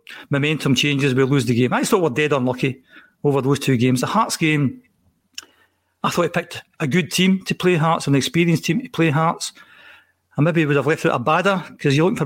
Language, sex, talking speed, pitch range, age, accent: English, male, 235 wpm, 145-180 Hz, 40-59, British